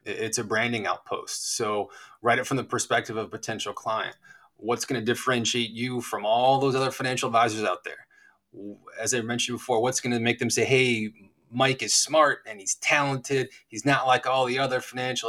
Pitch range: 115-135 Hz